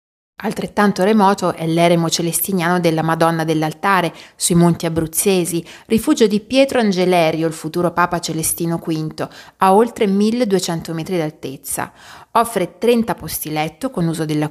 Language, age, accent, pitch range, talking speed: Italian, 30-49, native, 160-205 Hz, 130 wpm